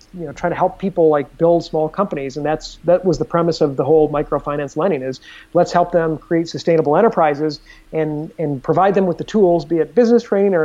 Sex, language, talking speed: male, English, 225 wpm